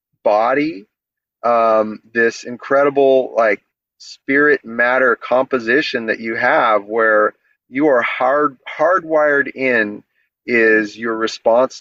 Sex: male